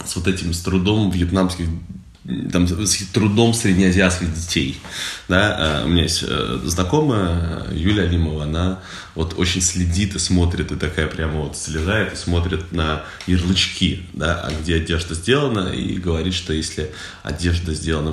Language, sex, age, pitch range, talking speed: Russian, male, 20-39, 80-95 Hz, 140 wpm